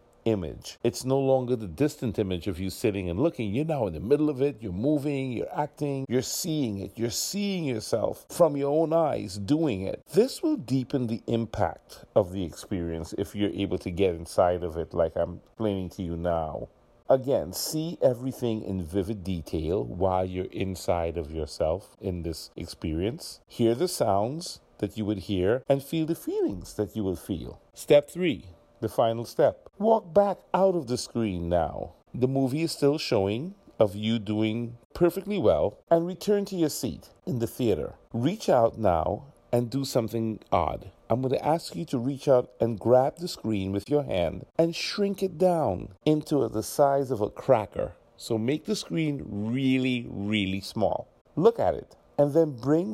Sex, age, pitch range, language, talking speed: male, 50-69, 105-150 Hz, English, 180 wpm